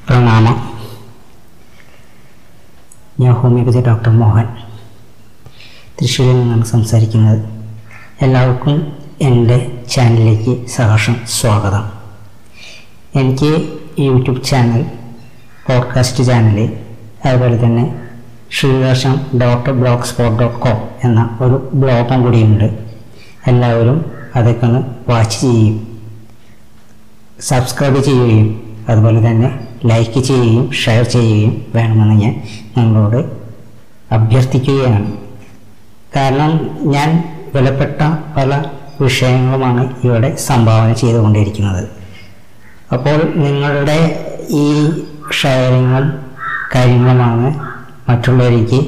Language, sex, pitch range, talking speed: Malayalam, female, 115-130 Hz, 70 wpm